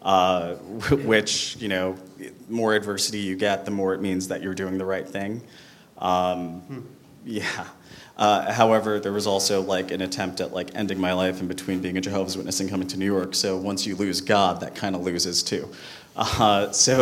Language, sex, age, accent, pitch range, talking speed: English, male, 30-49, American, 95-100 Hz, 200 wpm